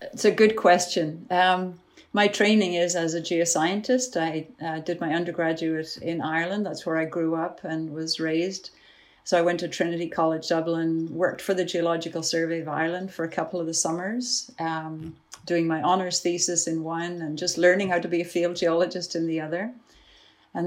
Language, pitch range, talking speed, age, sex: English, 165-180 Hz, 190 wpm, 70-89, female